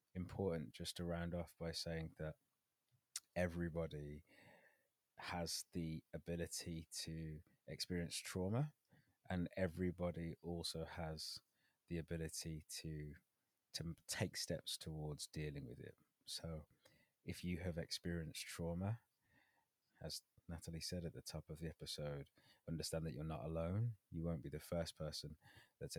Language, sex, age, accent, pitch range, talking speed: English, male, 20-39, British, 75-85 Hz, 130 wpm